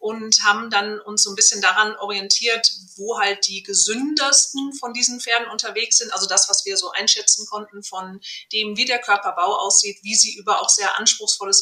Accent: German